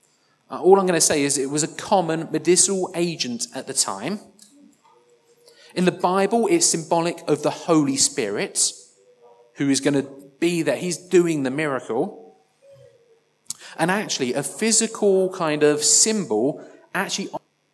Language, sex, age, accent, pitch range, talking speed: English, male, 30-49, British, 145-195 Hz, 140 wpm